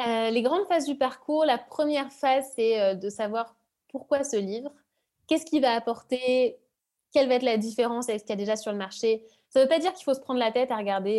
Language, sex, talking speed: French, female, 245 wpm